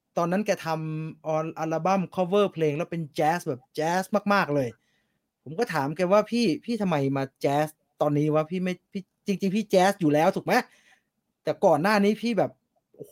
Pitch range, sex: 155-200 Hz, male